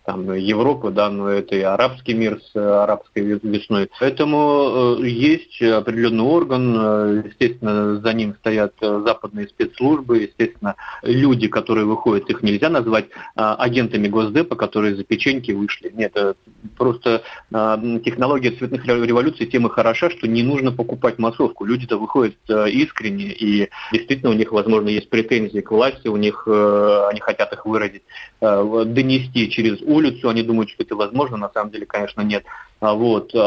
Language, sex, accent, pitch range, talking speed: Russian, male, native, 105-125 Hz, 160 wpm